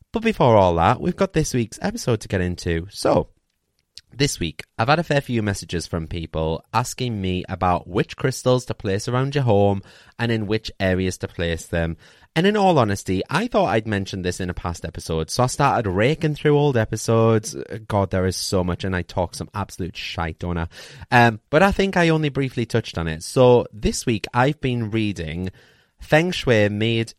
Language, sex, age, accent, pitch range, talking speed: English, male, 20-39, British, 95-140 Hz, 205 wpm